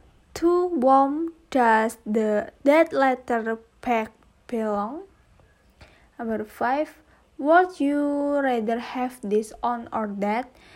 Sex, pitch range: female, 220-280 Hz